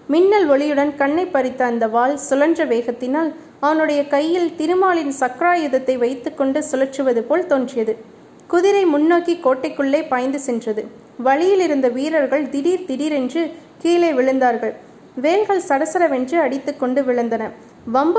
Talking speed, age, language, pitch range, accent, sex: 110 wpm, 20-39, Tamil, 250-320 Hz, native, female